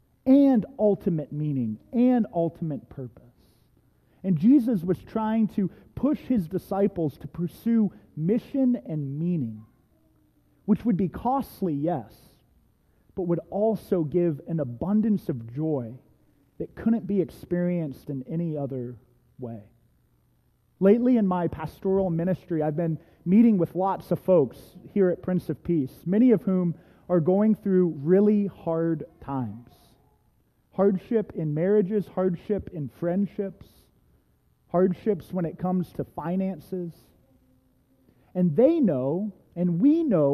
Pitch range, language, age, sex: 145-205 Hz, English, 30-49, male